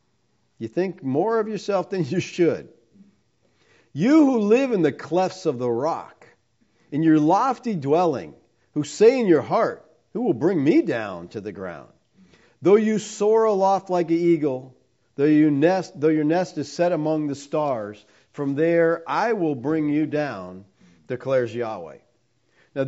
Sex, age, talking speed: male, 50-69, 155 wpm